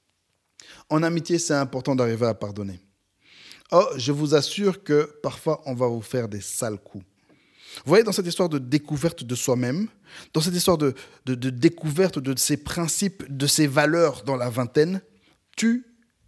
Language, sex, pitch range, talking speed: French, male, 130-185 Hz, 170 wpm